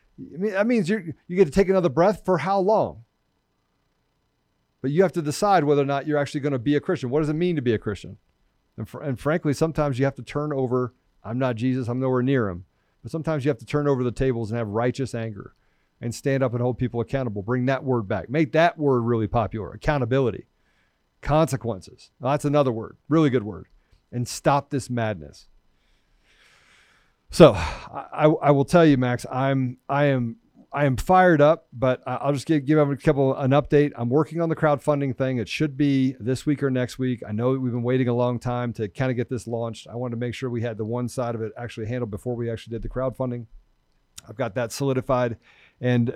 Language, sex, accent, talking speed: English, male, American, 225 wpm